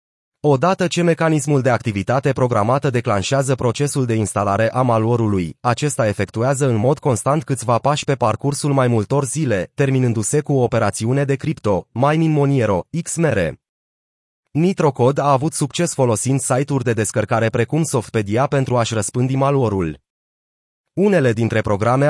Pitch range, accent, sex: 115-145 Hz, native, male